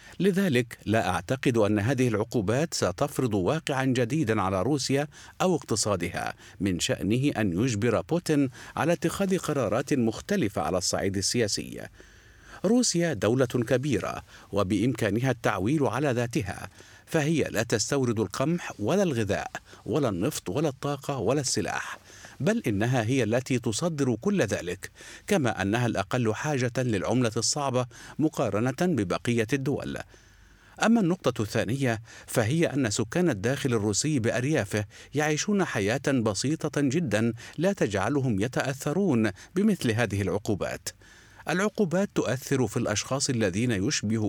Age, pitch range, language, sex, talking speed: 50-69, 110-150 Hz, Arabic, male, 115 wpm